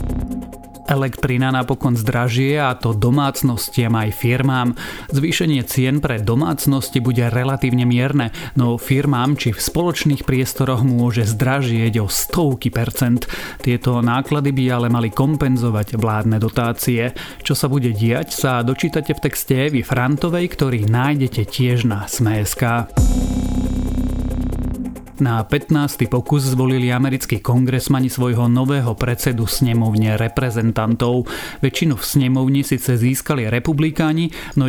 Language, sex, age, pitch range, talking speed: Slovak, male, 30-49, 115-140 Hz, 115 wpm